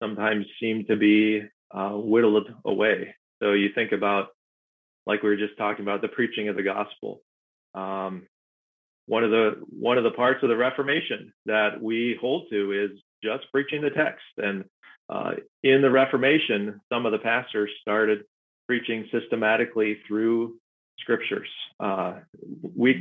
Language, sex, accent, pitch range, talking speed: English, male, American, 105-130 Hz, 150 wpm